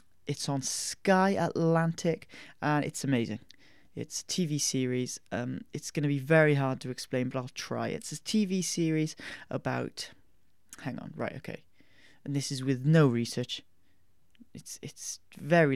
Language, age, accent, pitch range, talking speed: English, 30-49, British, 125-155 Hz, 150 wpm